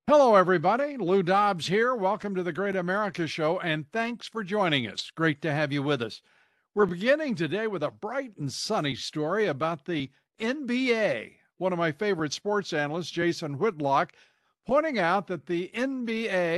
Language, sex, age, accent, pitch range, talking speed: English, male, 60-79, American, 155-210 Hz, 170 wpm